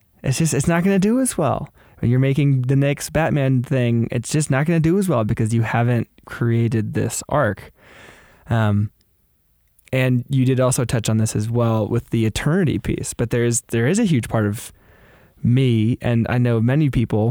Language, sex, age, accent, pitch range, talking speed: English, male, 20-39, American, 110-130 Hz, 195 wpm